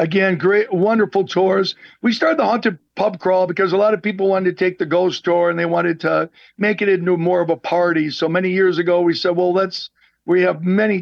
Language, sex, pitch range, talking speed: English, male, 175-205 Hz, 235 wpm